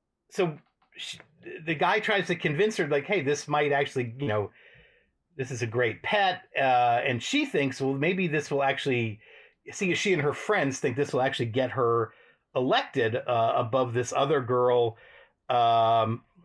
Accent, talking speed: American, 170 wpm